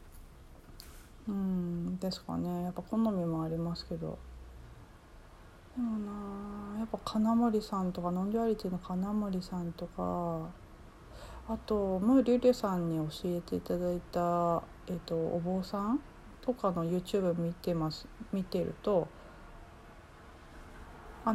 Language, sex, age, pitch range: Japanese, female, 40-59, 155-205 Hz